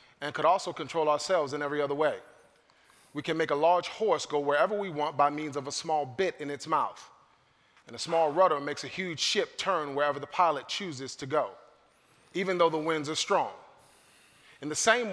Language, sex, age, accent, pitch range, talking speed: English, male, 30-49, American, 140-170 Hz, 205 wpm